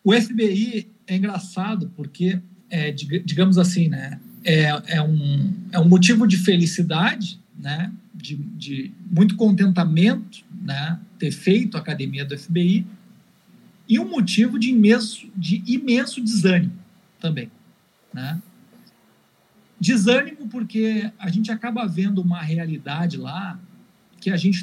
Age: 50-69